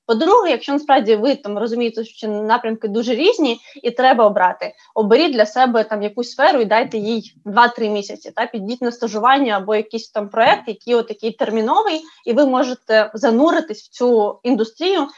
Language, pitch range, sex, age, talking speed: Ukrainian, 220-270 Hz, female, 20-39, 165 wpm